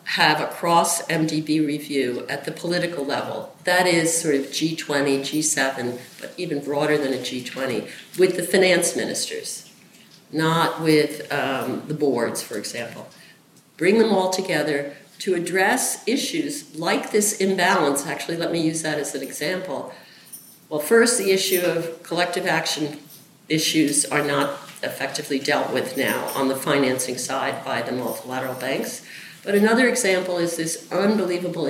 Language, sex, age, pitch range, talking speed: English, female, 50-69, 140-175 Hz, 145 wpm